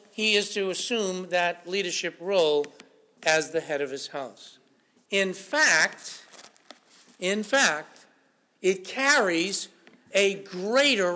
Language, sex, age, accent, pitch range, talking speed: English, male, 60-79, American, 200-240 Hz, 115 wpm